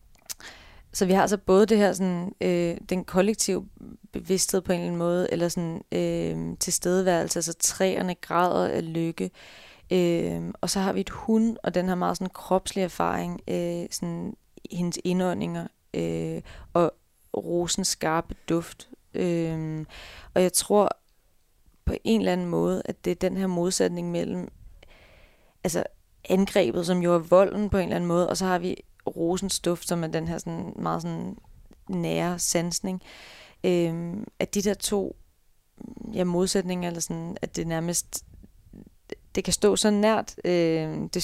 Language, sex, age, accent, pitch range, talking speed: Danish, female, 30-49, native, 165-190 Hz, 160 wpm